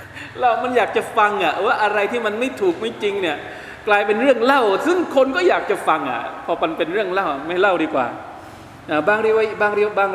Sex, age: male, 20-39